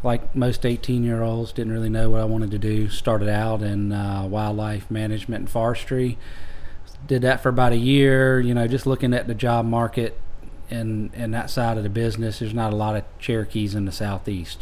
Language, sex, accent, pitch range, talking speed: English, male, American, 95-115 Hz, 200 wpm